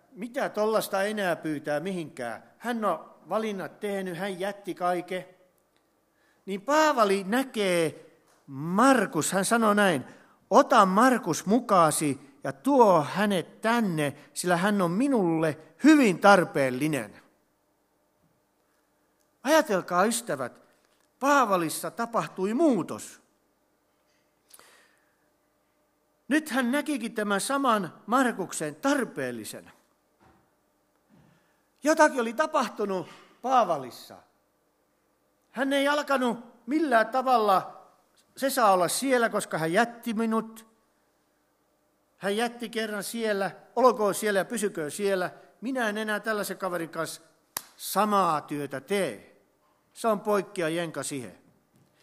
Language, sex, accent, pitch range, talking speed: Finnish, male, native, 170-235 Hz, 95 wpm